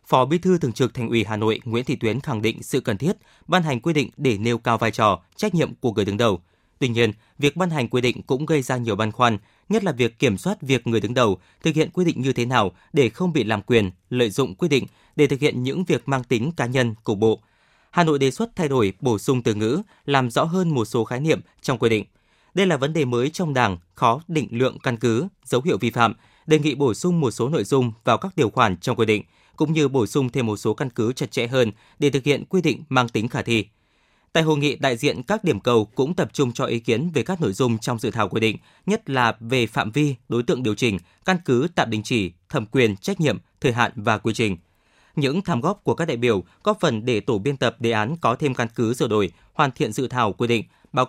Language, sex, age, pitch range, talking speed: Vietnamese, male, 20-39, 115-150 Hz, 265 wpm